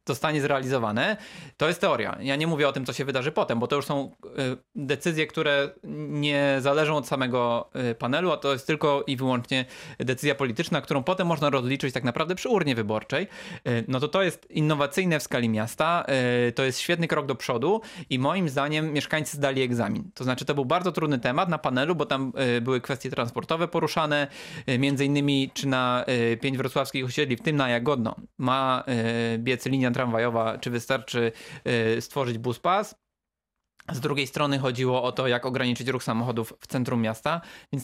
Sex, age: male, 20-39